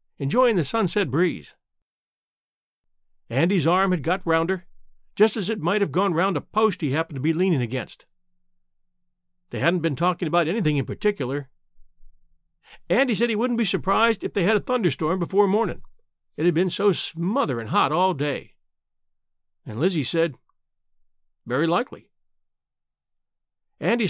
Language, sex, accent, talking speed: English, male, American, 145 wpm